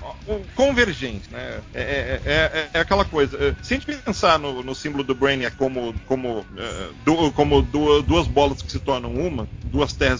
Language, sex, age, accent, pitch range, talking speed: Portuguese, male, 40-59, Brazilian, 130-180 Hz, 185 wpm